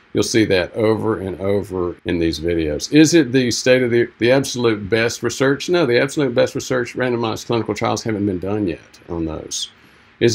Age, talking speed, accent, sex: 50-69, 195 wpm, American, male